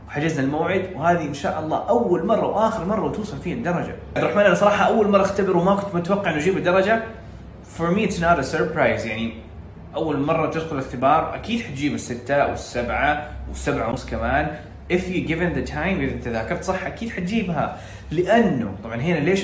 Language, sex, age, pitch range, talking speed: Arabic, male, 20-39, 120-170 Hz, 175 wpm